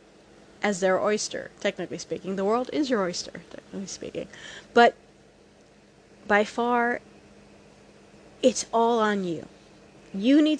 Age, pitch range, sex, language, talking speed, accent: 30-49, 215-305 Hz, female, English, 120 wpm, American